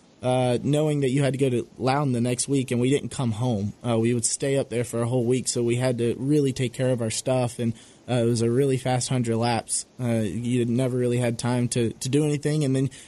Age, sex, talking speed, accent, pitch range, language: 20-39, male, 265 wpm, American, 115-130 Hz, English